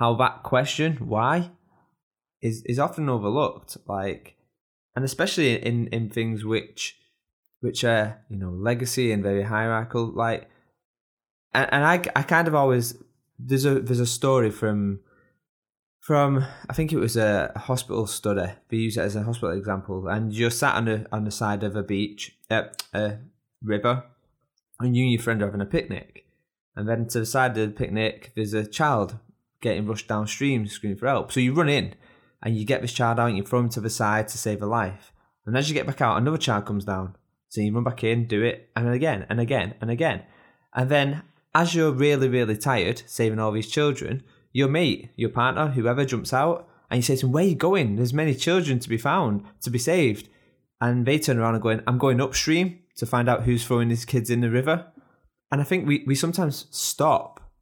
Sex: male